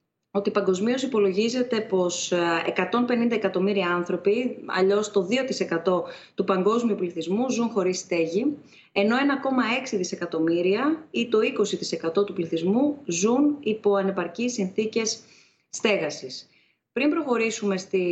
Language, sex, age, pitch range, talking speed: Greek, female, 30-49, 180-220 Hz, 105 wpm